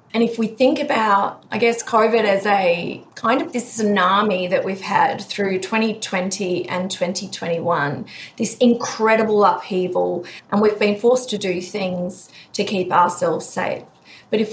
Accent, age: Australian, 30-49